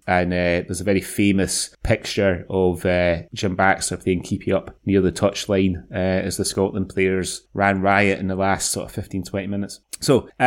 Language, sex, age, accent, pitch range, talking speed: English, male, 30-49, British, 95-110 Hz, 195 wpm